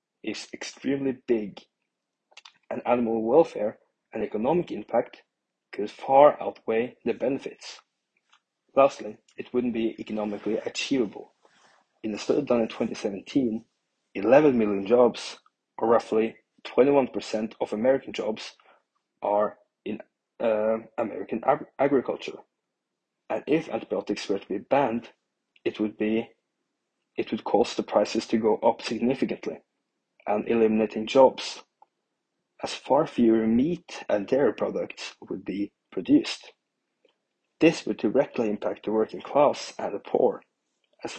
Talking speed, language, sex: 120 wpm, English, male